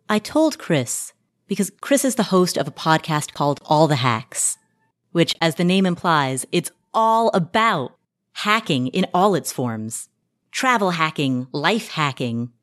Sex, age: female, 30-49